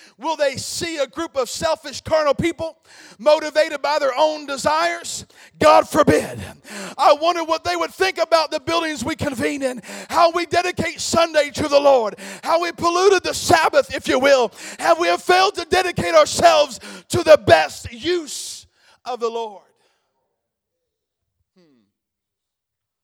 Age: 40-59